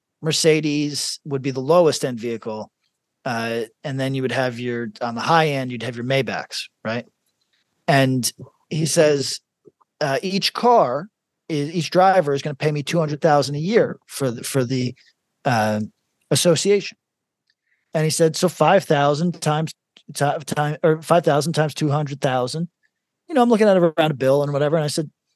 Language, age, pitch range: English, 40-59, 145-190 Hz